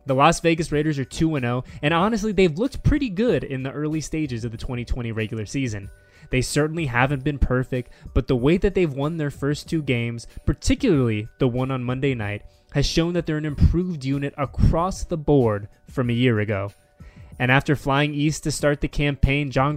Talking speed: 195 wpm